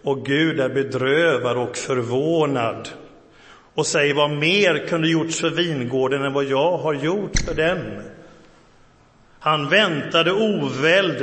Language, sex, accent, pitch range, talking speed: Swedish, male, native, 140-165 Hz, 130 wpm